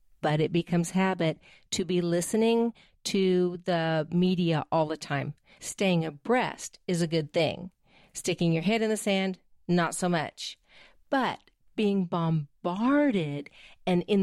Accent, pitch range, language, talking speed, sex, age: American, 165-215 Hz, English, 140 wpm, female, 50-69